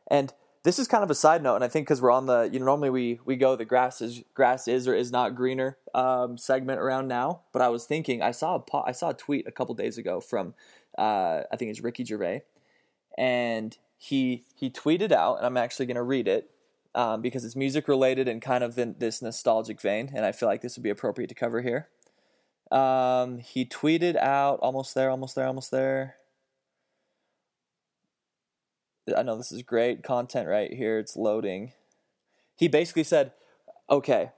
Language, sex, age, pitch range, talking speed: English, male, 20-39, 120-140 Hz, 200 wpm